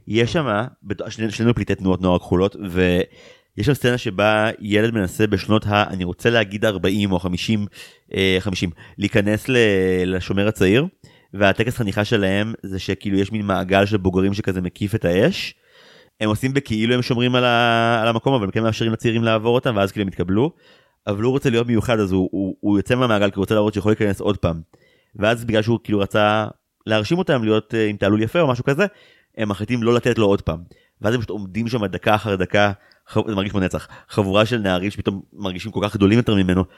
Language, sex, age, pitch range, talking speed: Hebrew, male, 30-49, 95-115 Hz, 190 wpm